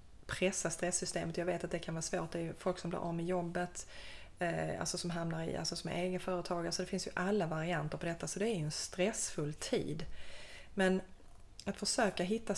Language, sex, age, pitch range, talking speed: Swedish, female, 20-39, 160-185 Hz, 215 wpm